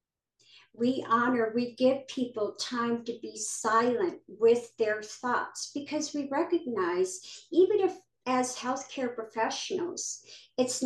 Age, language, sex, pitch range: 50-69, English, male, 225-290 Hz